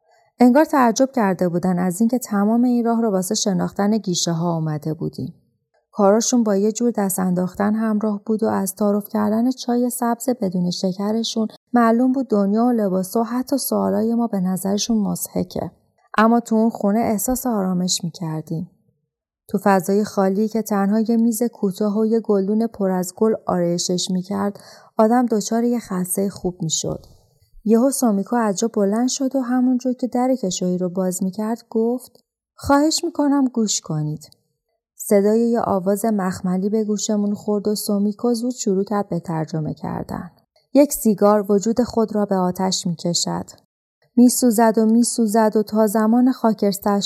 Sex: female